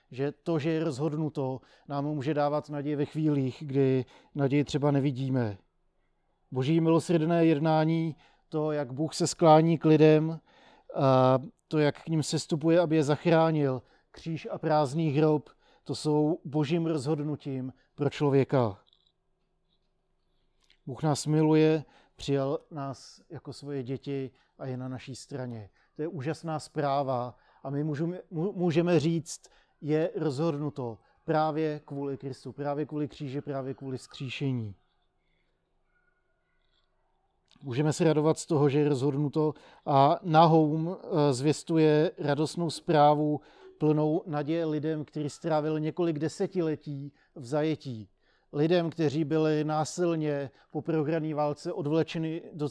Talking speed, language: 125 wpm, Czech